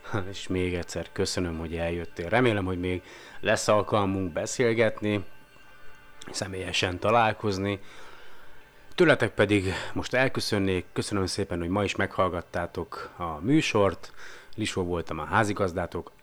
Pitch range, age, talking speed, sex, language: 90-105 Hz, 30-49, 110 wpm, male, Hungarian